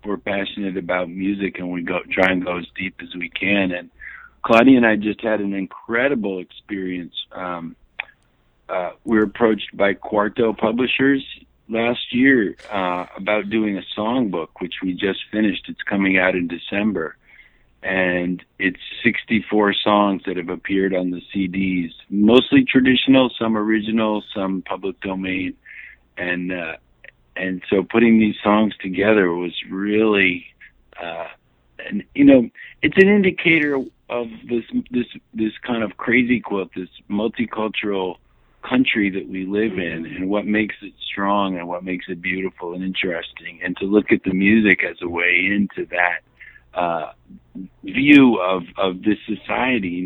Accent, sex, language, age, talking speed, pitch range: American, male, English, 50-69, 155 wpm, 90-110 Hz